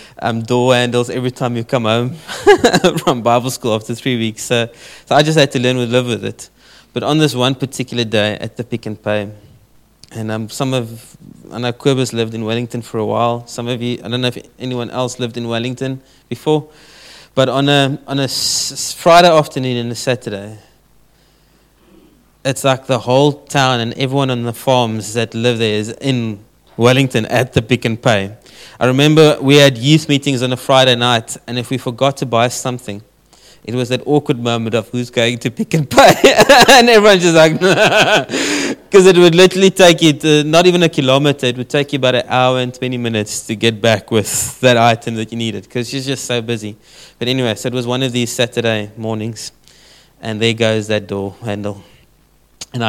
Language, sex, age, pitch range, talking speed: English, male, 20-39, 115-140 Hz, 205 wpm